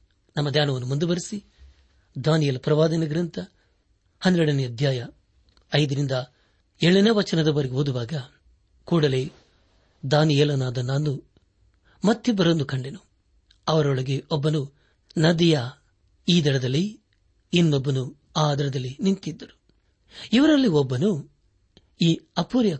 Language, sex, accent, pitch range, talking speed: Kannada, male, native, 130-175 Hz, 75 wpm